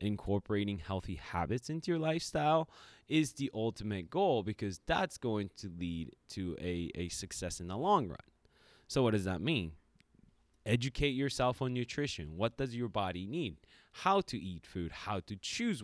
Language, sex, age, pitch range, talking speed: English, male, 20-39, 95-125 Hz, 165 wpm